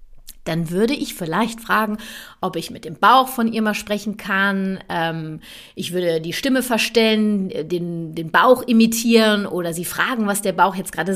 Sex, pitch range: female, 195-240 Hz